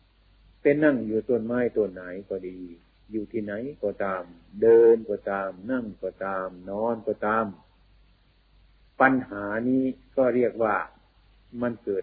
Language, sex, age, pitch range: Thai, male, 50-69, 100-130 Hz